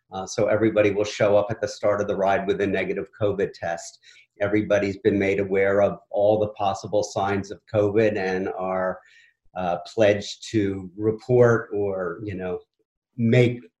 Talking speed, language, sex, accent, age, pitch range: 165 wpm, English, male, American, 50-69, 100-110 Hz